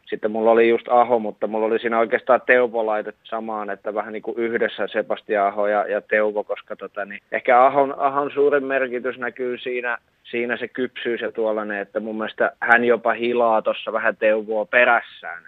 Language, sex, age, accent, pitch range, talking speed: Finnish, male, 20-39, native, 110-140 Hz, 180 wpm